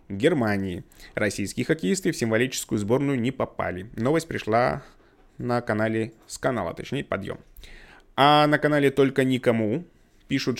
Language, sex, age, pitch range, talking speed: Russian, male, 20-39, 115-140 Hz, 125 wpm